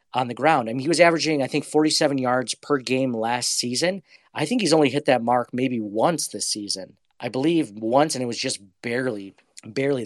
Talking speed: 220 wpm